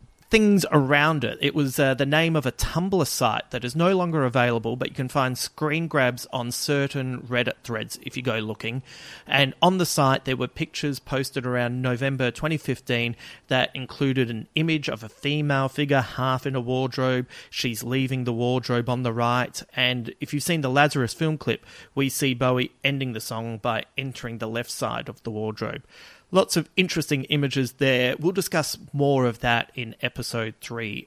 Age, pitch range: 30-49, 125-150 Hz